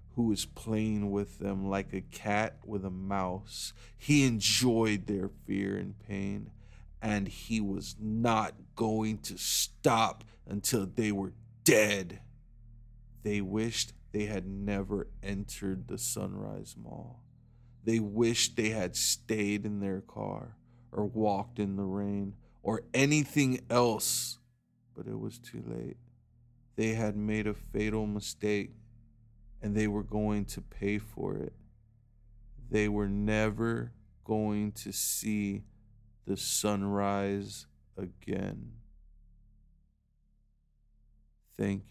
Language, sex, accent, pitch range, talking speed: English, male, American, 100-115 Hz, 115 wpm